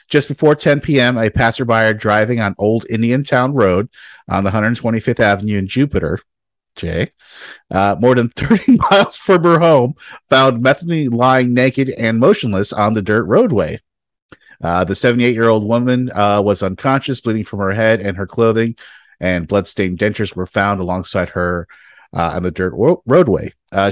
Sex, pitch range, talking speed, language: male, 100-125 Hz, 165 wpm, English